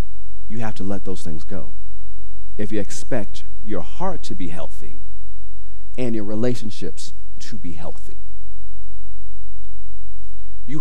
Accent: American